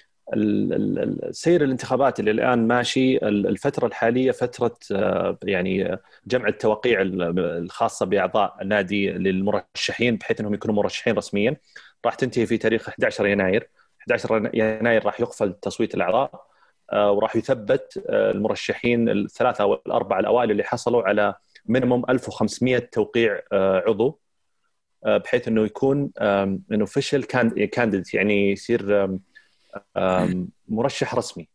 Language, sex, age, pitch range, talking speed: Arabic, male, 30-49, 105-130 Hz, 105 wpm